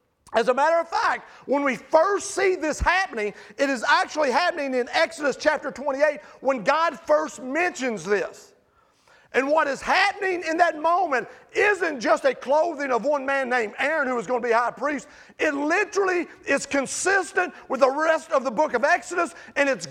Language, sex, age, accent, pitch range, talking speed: English, male, 40-59, American, 270-345 Hz, 185 wpm